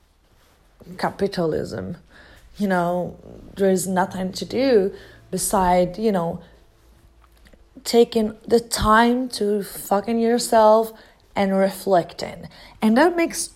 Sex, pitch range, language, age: female, 200-260 Hz, English, 30-49